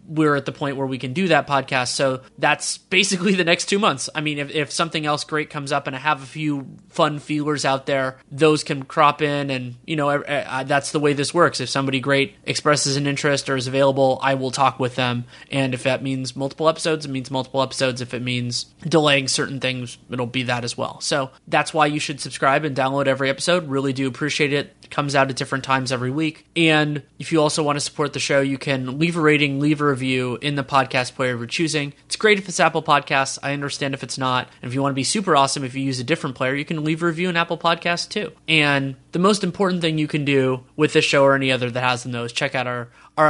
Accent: American